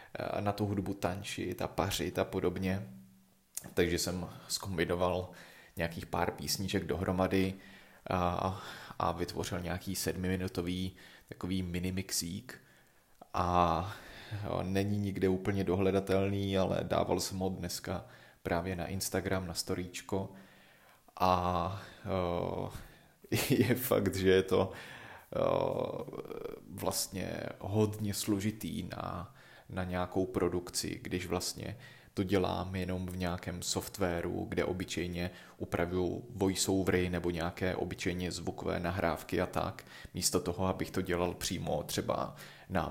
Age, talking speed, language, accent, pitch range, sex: 30-49, 115 wpm, Czech, native, 90-95 Hz, male